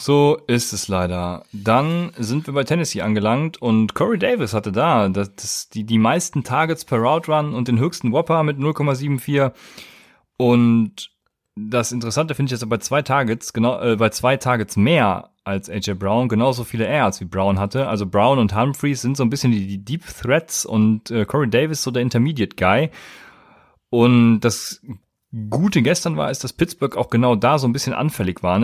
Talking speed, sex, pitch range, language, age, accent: 190 wpm, male, 105-135 Hz, German, 30-49, German